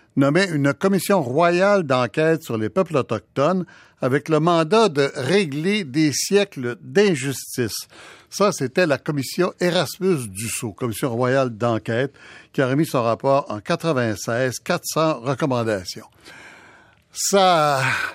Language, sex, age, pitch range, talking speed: French, male, 60-79, 125-175 Hz, 115 wpm